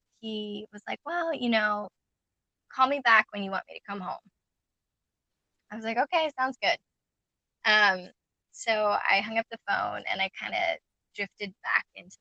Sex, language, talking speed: female, English, 175 wpm